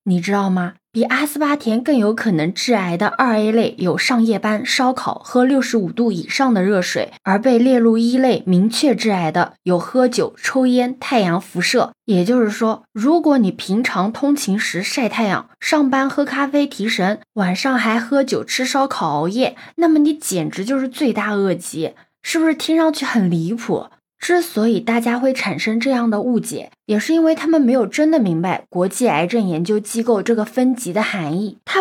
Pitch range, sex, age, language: 195-270 Hz, female, 20-39, Chinese